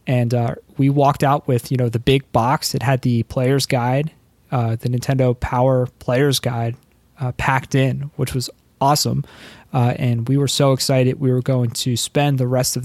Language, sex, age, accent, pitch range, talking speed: English, male, 20-39, American, 125-145 Hz, 195 wpm